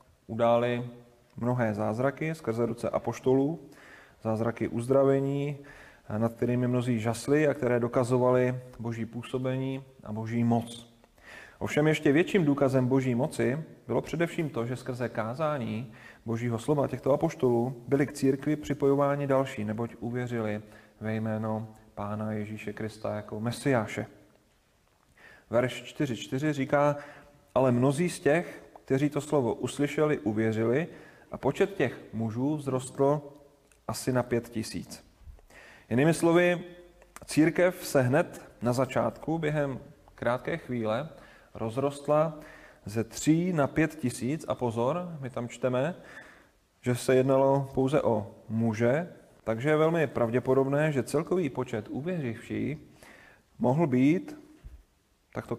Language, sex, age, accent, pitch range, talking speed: Czech, male, 30-49, native, 115-145 Hz, 120 wpm